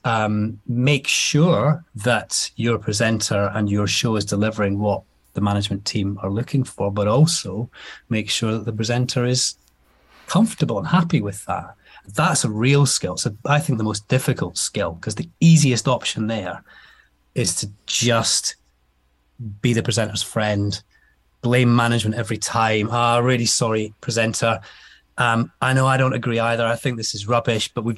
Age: 30-49